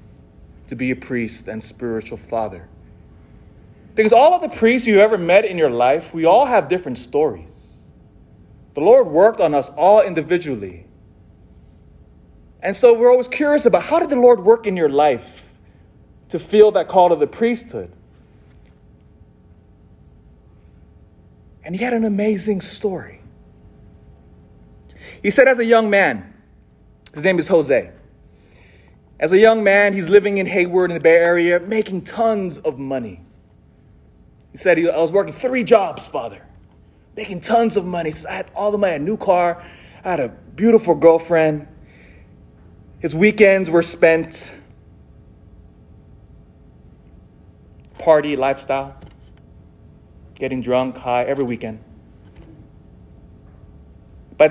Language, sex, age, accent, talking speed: English, male, 30-49, American, 135 wpm